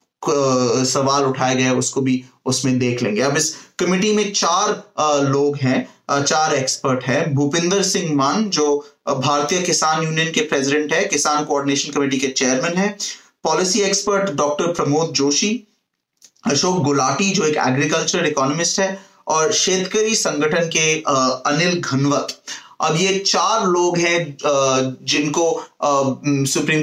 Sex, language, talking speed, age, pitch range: male, Hindi, 130 wpm, 30-49, 140-170 Hz